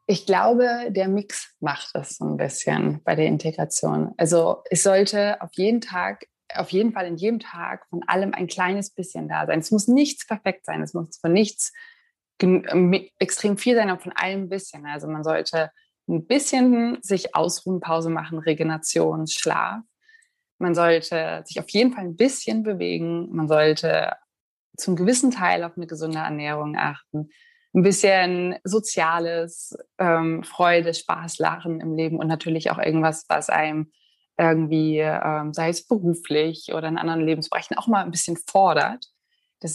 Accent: German